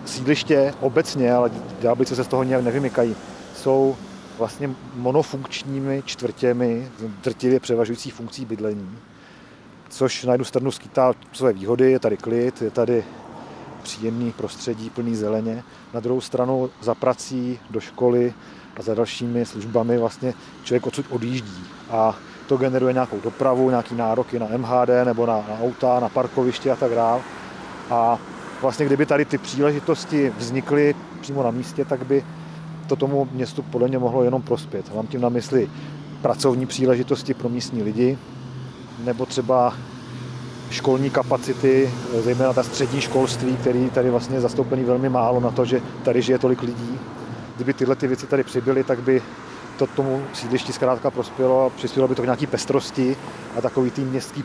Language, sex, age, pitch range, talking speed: Czech, male, 40-59, 120-135 Hz, 155 wpm